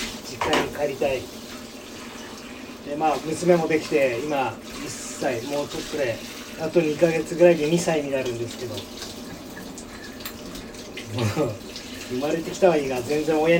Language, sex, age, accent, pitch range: Japanese, male, 40-59, native, 130-180 Hz